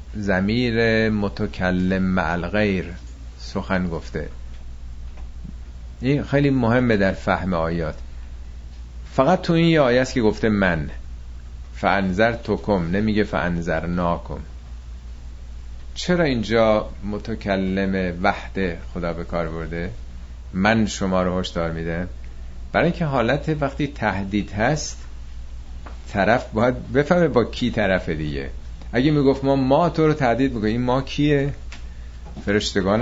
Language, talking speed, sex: Persian, 115 wpm, male